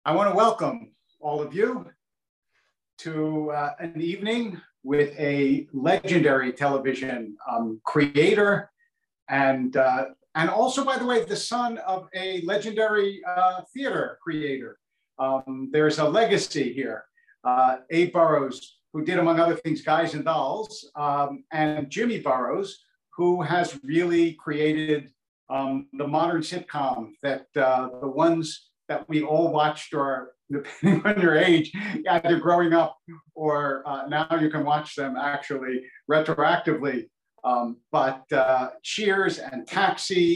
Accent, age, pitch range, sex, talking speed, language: American, 50-69, 140-180 Hz, male, 135 wpm, English